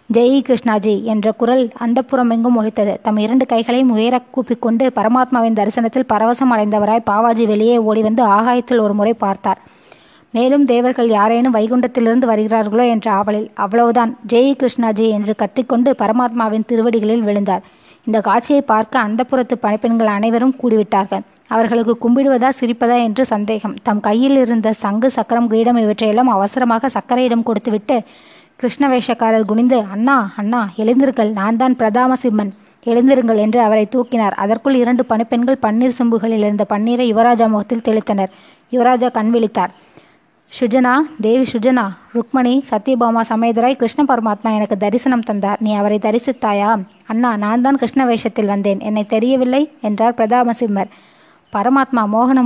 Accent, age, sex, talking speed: native, 20-39, female, 125 wpm